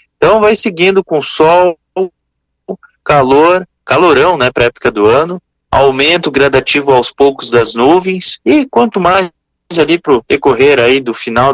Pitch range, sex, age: 115-175 Hz, male, 20-39